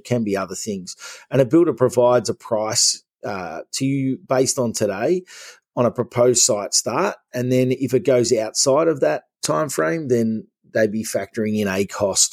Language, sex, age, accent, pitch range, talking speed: English, male, 30-49, Australian, 100-130 Hz, 180 wpm